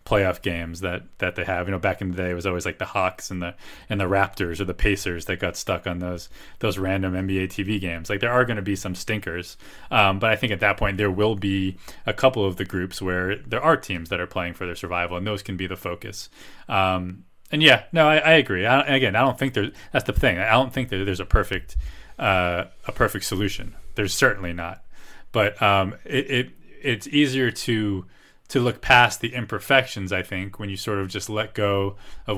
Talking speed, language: 235 wpm, English